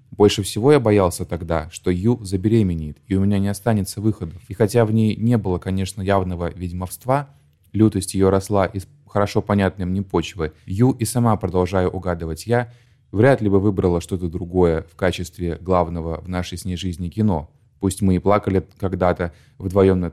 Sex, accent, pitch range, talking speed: male, native, 90-110 Hz, 175 wpm